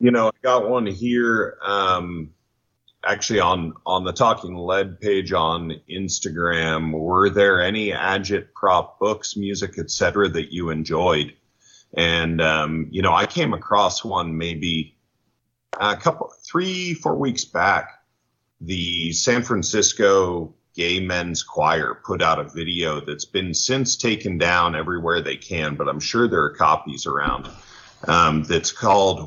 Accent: American